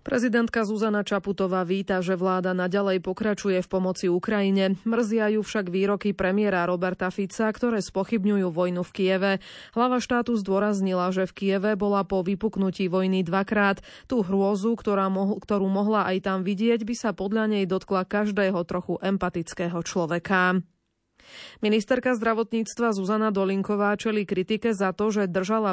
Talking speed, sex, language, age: 140 wpm, female, Slovak, 20-39